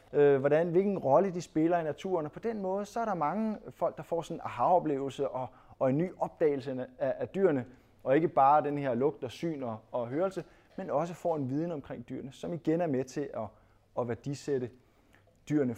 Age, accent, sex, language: 20-39, native, male, Danish